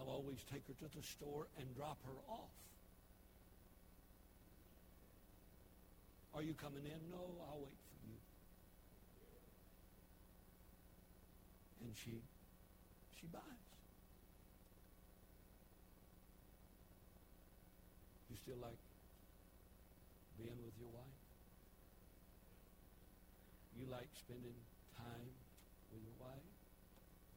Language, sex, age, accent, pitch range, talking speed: English, male, 60-79, American, 95-140 Hz, 85 wpm